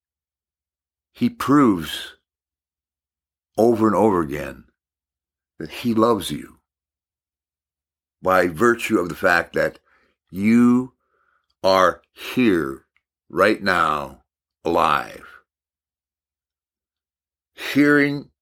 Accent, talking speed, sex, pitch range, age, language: American, 75 wpm, male, 75-115 Hz, 60-79, English